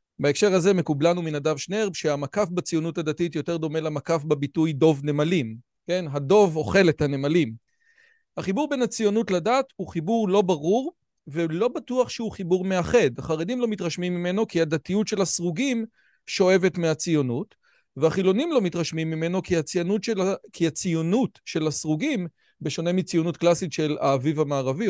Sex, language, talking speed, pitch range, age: male, Hebrew, 140 wpm, 155-210 Hz, 40-59